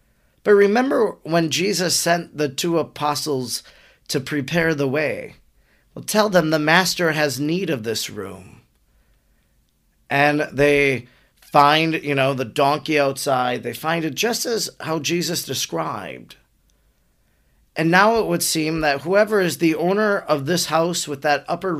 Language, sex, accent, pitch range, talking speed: English, male, American, 135-170 Hz, 150 wpm